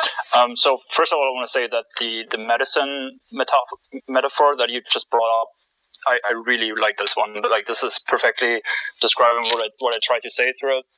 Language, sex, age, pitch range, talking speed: English, male, 20-39, 115-155 Hz, 215 wpm